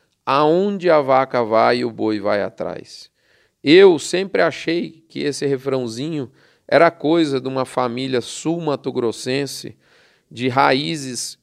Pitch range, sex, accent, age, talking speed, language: 135-170 Hz, male, Brazilian, 40-59, 120 wpm, Portuguese